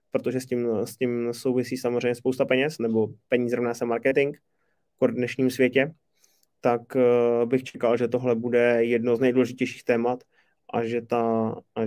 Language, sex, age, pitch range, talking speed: Czech, male, 20-39, 120-145 Hz, 160 wpm